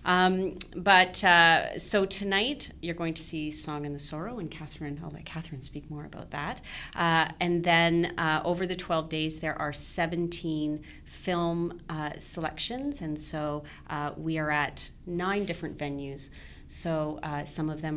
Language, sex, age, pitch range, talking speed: English, female, 30-49, 150-170 Hz, 165 wpm